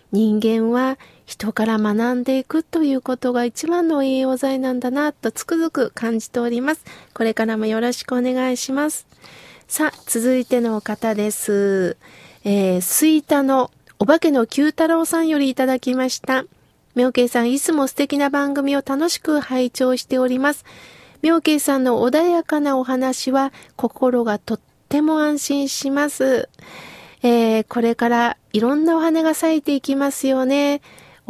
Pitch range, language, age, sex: 240-295 Hz, Japanese, 40-59, female